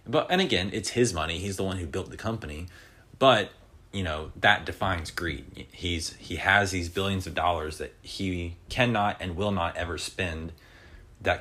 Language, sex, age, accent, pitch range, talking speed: English, male, 30-49, American, 80-100 Hz, 185 wpm